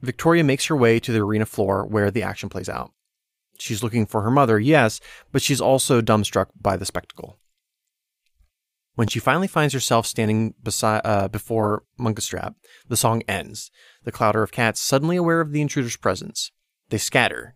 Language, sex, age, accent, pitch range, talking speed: English, male, 30-49, American, 105-140 Hz, 175 wpm